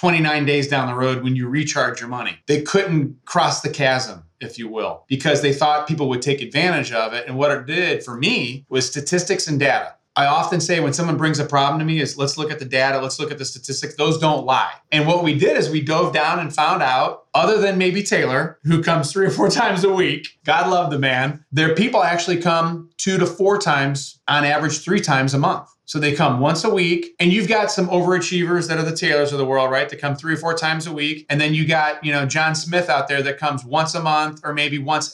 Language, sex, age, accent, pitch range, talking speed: English, male, 30-49, American, 135-160 Hz, 250 wpm